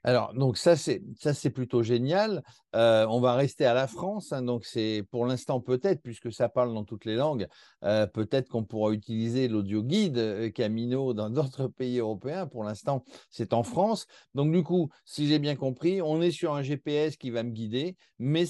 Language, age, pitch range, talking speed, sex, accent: French, 50-69, 115-155 Hz, 200 wpm, male, French